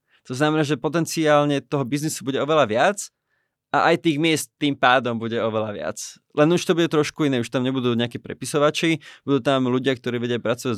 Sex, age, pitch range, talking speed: male, 20-39, 115-145 Hz, 195 wpm